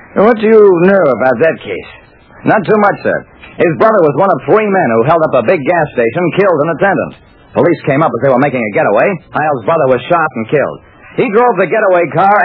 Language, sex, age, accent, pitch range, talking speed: English, male, 50-69, American, 145-220 Hz, 230 wpm